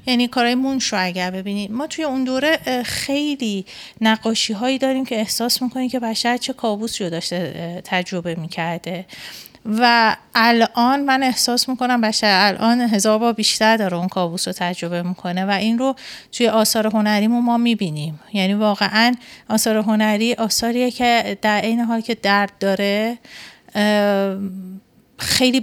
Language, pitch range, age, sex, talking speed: Persian, 200-240 Hz, 30-49, female, 145 wpm